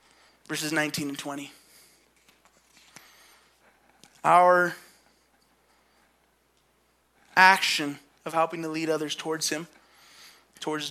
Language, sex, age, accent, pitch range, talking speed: English, male, 20-39, American, 150-175 Hz, 75 wpm